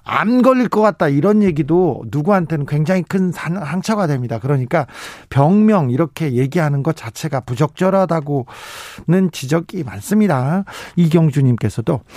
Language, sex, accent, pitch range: Korean, male, native, 125-175 Hz